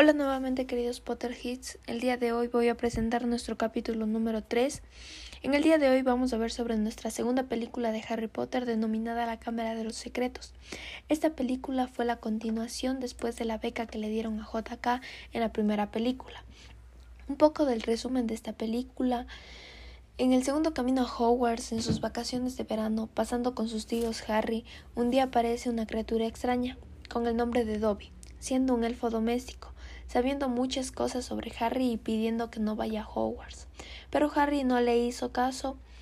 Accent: Mexican